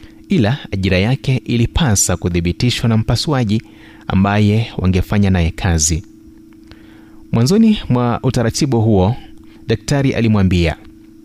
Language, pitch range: Swahili, 100-125 Hz